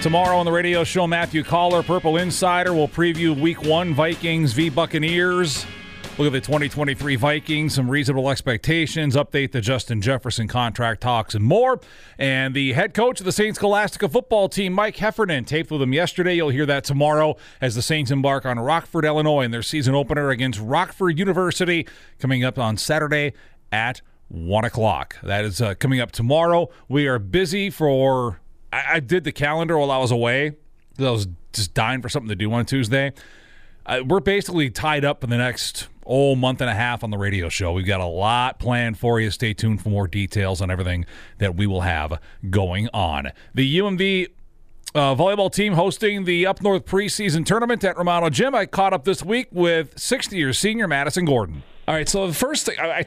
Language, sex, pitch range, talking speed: English, male, 120-175 Hz, 190 wpm